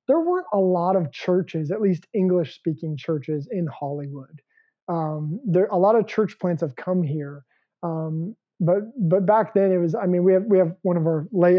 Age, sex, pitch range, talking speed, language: 20-39, male, 165-200 Hz, 200 wpm, English